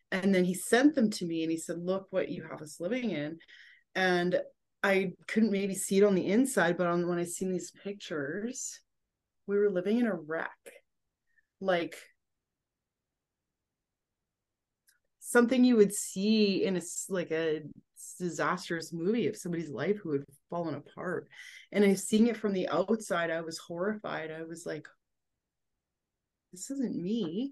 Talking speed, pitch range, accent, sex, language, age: 160 wpm, 175-220 Hz, American, female, English, 30-49